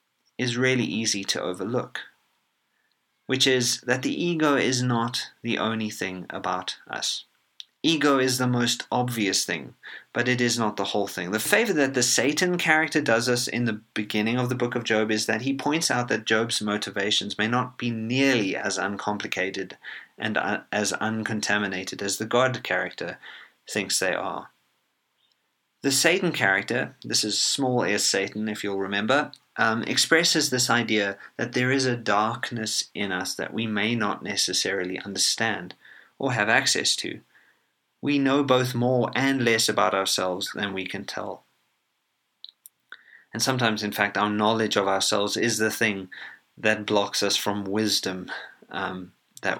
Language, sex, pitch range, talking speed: English, male, 100-125 Hz, 160 wpm